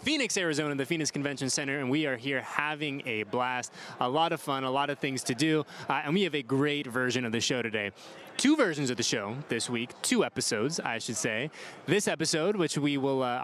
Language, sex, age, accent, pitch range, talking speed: English, male, 20-39, American, 125-160 Hz, 230 wpm